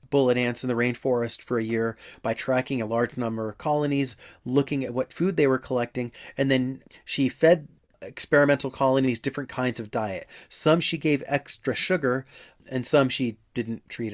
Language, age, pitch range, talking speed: English, 30-49, 115-135 Hz, 180 wpm